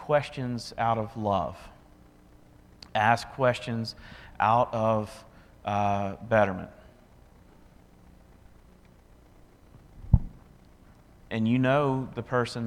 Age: 40-59